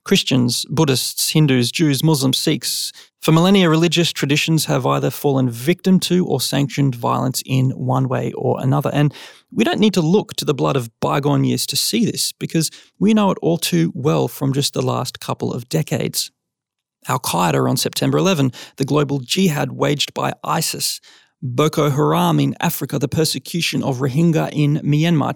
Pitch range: 135-175 Hz